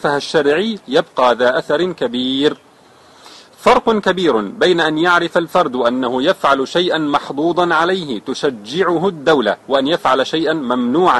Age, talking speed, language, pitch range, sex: 40-59, 115 wpm, Arabic, 140-180 Hz, male